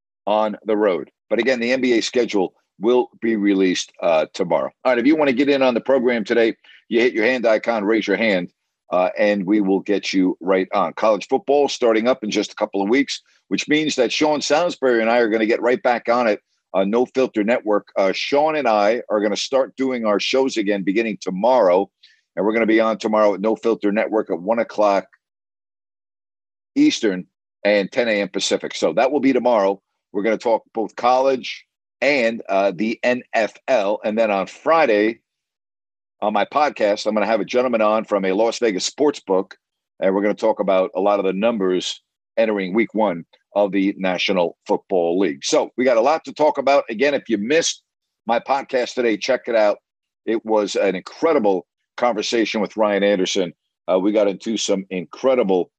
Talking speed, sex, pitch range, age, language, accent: 205 wpm, male, 100-125 Hz, 50-69, English, American